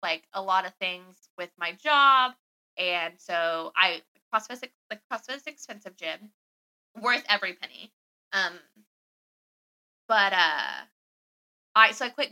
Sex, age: female, 20-39